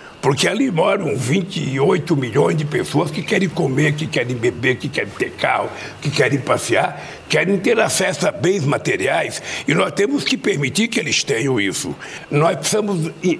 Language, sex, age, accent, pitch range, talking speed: Portuguese, male, 60-79, Brazilian, 155-195 Hz, 165 wpm